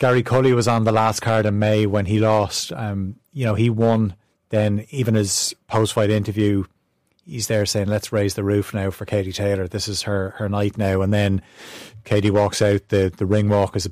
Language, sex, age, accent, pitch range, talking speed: English, male, 30-49, Irish, 100-115 Hz, 220 wpm